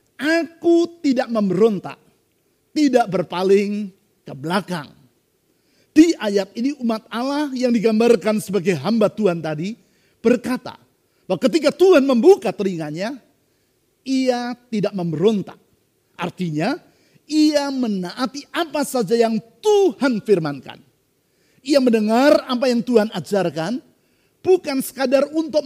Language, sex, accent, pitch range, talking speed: Indonesian, male, native, 190-265 Hz, 105 wpm